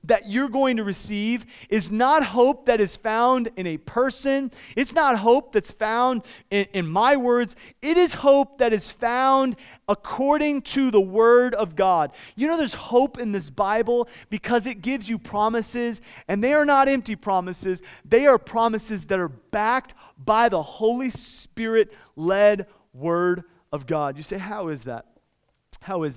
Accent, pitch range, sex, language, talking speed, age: American, 190-250 Hz, male, English, 165 wpm, 30-49